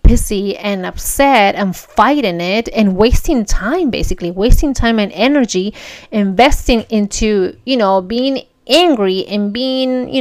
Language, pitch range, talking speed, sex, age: English, 190-240 Hz, 135 wpm, female, 30-49